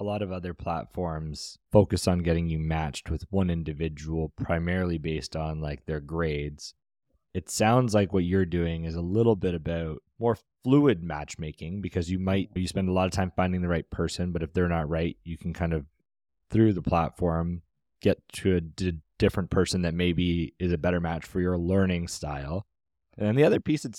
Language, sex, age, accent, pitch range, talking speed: English, male, 20-39, American, 85-105 Hz, 200 wpm